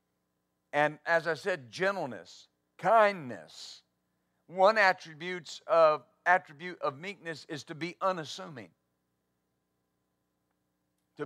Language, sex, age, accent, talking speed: English, male, 50-69, American, 90 wpm